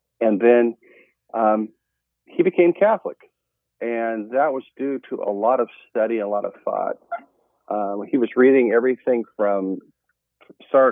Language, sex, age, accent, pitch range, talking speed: English, male, 40-59, American, 105-135 Hz, 145 wpm